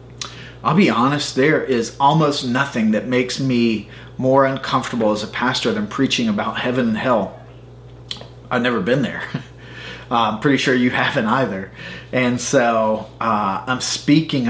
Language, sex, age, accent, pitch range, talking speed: English, male, 30-49, American, 120-160 Hz, 155 wpm